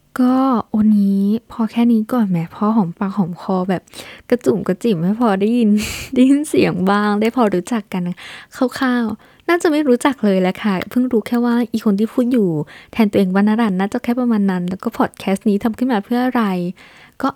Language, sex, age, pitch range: Thai, female, 20-39, 190-230 Hz